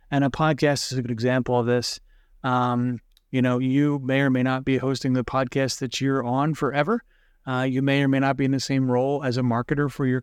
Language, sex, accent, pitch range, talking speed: English, male, American, 125-145 Hz, 240 wpm